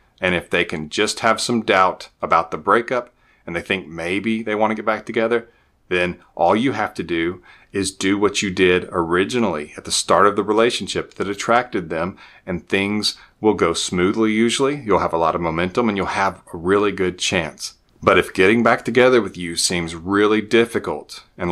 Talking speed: 200 wpm